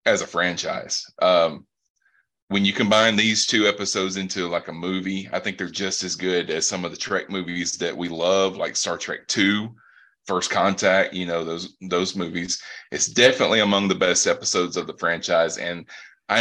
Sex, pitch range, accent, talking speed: male, 90-100 Hz, American, 185 wpm